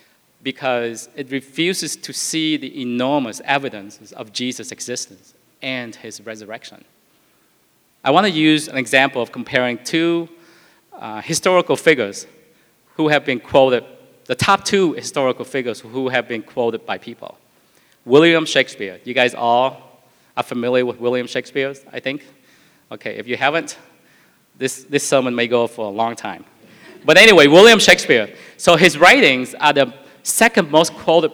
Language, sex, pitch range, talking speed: English, male, 120-160 Hz, 150 wpm